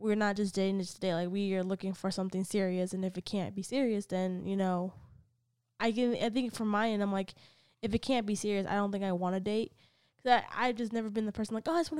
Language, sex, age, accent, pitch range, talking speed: English, female, 10-29, American, 185-225 Hz, 275 wpm